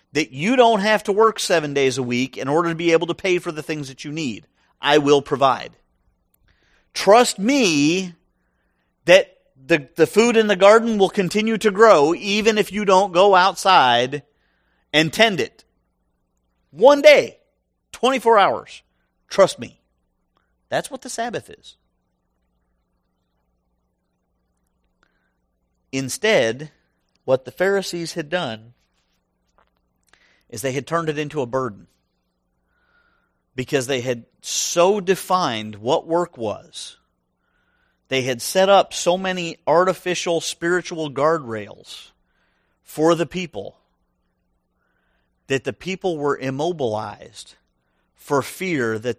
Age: 50-69